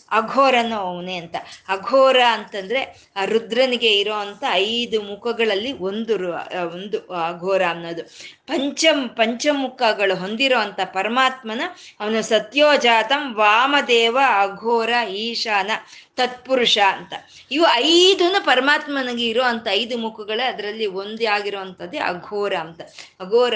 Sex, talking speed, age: female, 95 wpm, 20-39